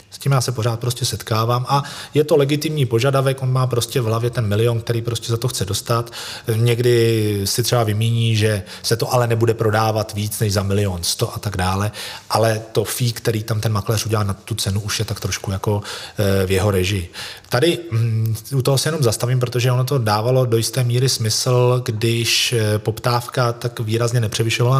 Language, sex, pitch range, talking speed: Czech, male, 105-120 Hz, 200 wpm